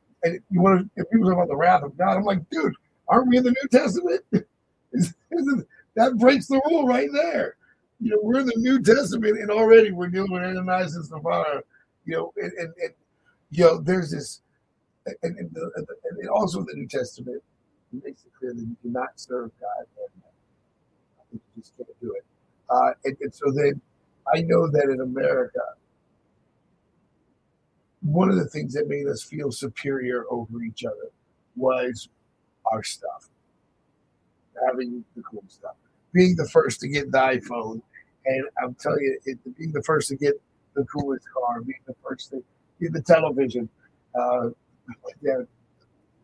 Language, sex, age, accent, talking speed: English, male, 50-69, American, 170 wpm